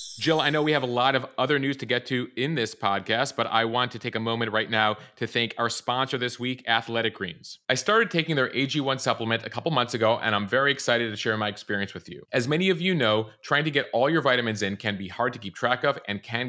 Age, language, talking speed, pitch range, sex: 30-49, English, 270 wpm, 110-135 Hz, male